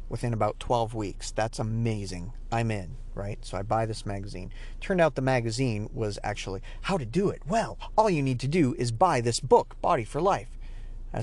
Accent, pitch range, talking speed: American, 105-125 Hz, 205 wpm